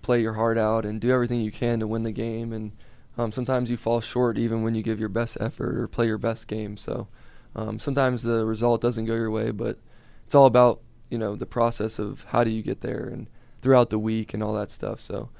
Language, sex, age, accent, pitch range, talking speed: English, male, 20-39, American, 110-120 Hz, 245 wpm